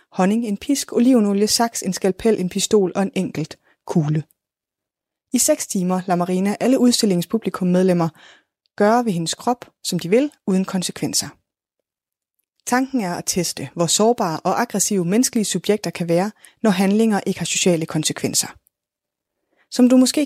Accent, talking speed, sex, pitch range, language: native, 150 wpm, female, 170-220 Hz, Danish